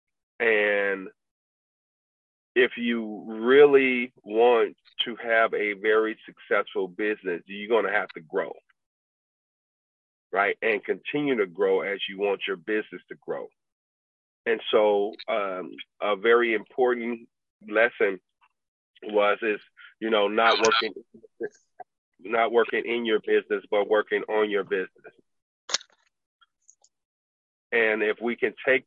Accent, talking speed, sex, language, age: American, 115 wpm, male, English, 40-59